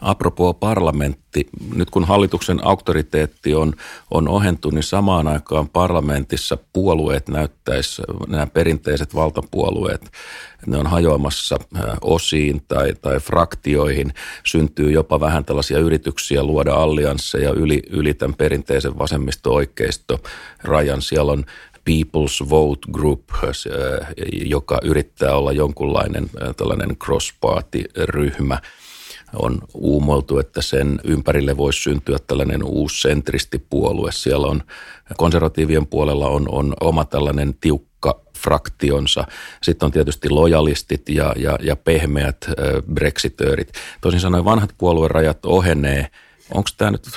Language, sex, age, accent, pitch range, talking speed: Finnish, male, 40-59, native, 70-80 Hz, 110 wpm